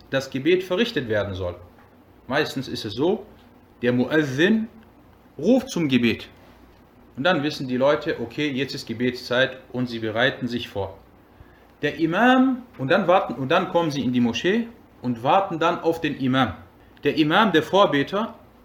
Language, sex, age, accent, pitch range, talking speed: German, male, 40-59, German, 120-150 Hz, 160 wpm